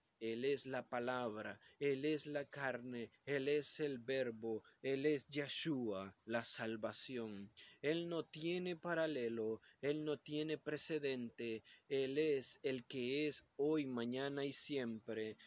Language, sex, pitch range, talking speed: Spanish, male, 120-155 Hz, 130 wpm